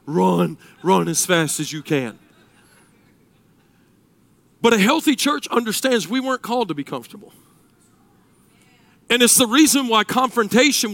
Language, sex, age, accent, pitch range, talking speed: English, male, 50-69, American, 210-320 Hz, 130 wpm